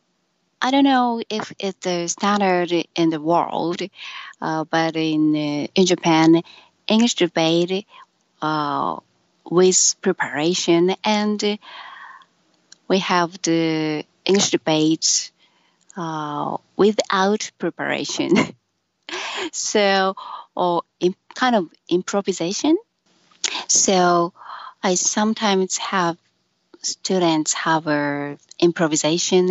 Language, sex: Japanese, female